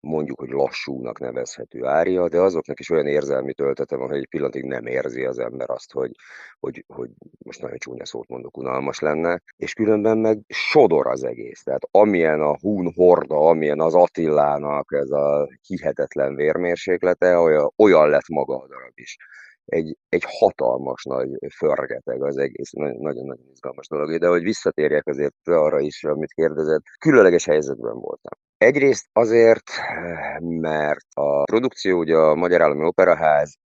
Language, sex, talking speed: Hungarian, male, 150 wpm